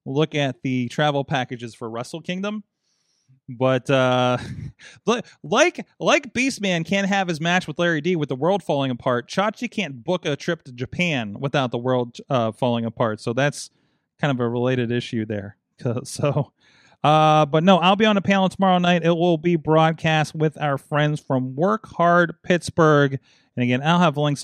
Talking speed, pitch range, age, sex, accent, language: 180 wpm, 125-180 Hz, 30-49, male, American, English